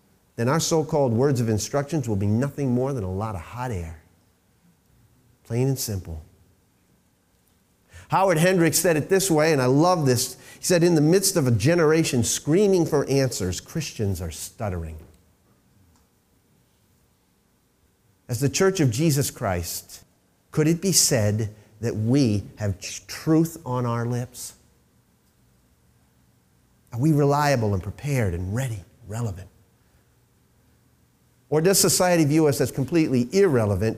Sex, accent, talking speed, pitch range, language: male, American, 135 wpm, 100-145 Hz, English